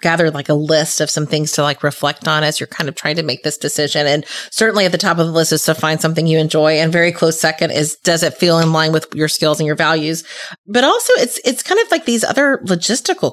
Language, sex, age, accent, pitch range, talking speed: English, female, 30-49, American, 165-240 Hz, 270 wpm